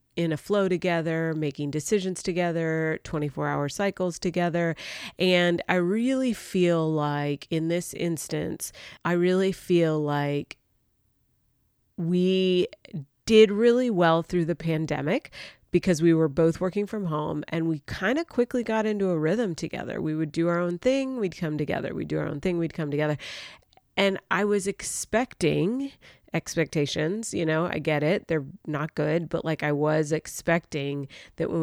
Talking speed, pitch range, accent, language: 160 wpm, 155-190 Hz, American, English